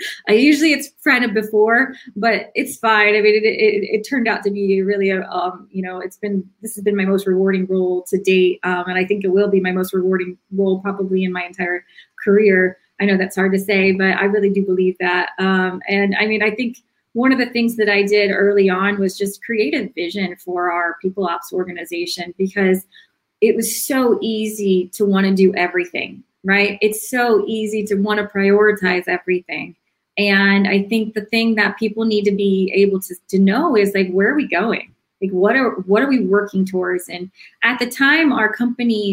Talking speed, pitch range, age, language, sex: 215 wpm, 185-215 Hz, 20-39, English, female